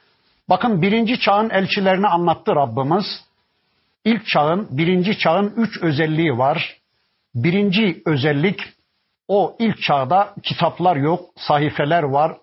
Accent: native